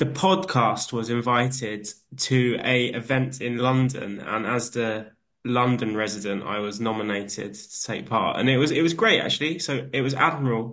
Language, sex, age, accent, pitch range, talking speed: English, male, 20-39, British, 115-135 Hz, 175 wpm